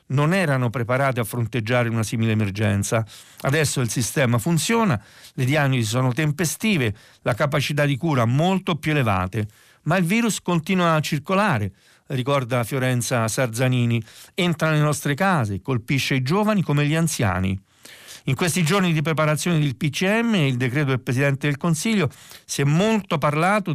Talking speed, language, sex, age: 150 wpm, Italian, male, 50-69